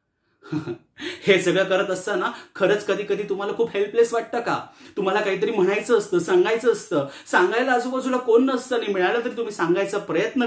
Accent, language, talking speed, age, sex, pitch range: native, Marathi, 160 wpm, 30-49, male, 145-240 Hz